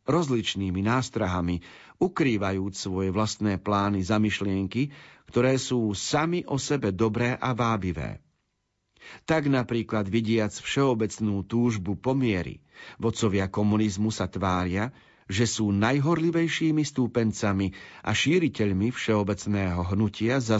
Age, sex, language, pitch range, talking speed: 50-69, male, Slovak, 105-135 Hz, 100 wpm